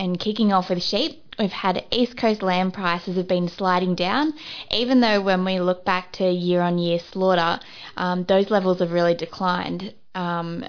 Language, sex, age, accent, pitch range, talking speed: English, female, 20-39, Australian, 170-185 Hz, 185 wpm